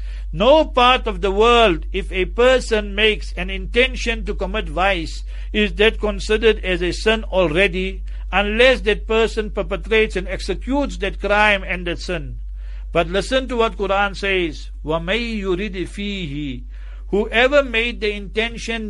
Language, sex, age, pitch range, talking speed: English, male, 60-79, 185-225 Hz, 140 wpm